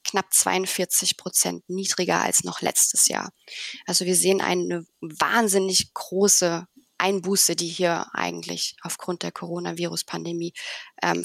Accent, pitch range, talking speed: German, 180-220 Hz, 115 wpm